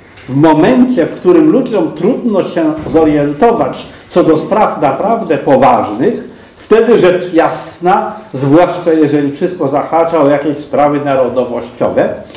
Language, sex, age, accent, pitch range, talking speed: Polish, male, 50-69, native, 140-175 Hz, 115 wpm